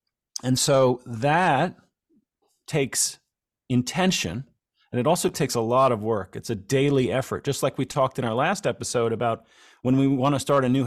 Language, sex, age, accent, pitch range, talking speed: English, male, 40-59, American, 120-150 Hz, 175 wpm